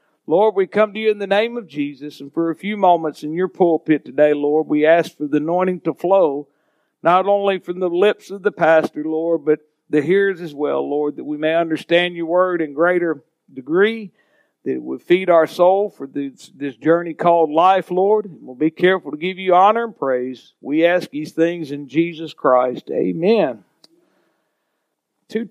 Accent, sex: American, male